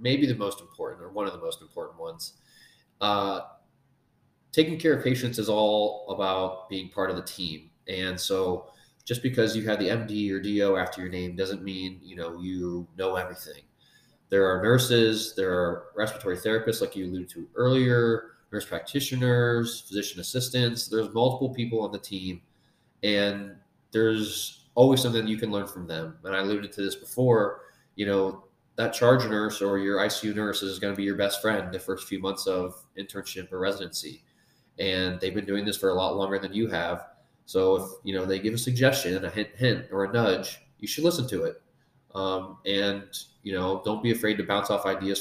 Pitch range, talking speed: 95-115 Hz, 195 wpm